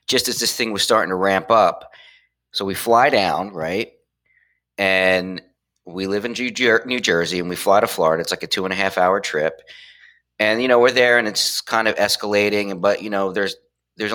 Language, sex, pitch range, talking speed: English, male, 90-125 Hz, 210 wpm